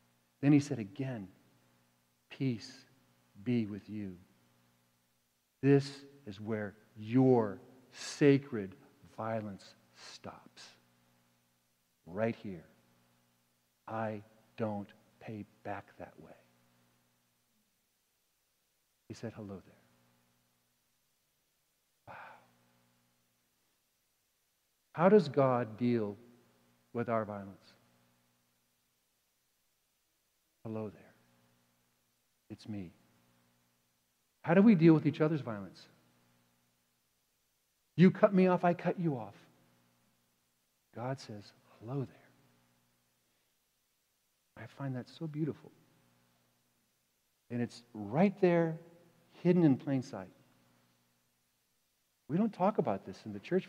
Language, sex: English, male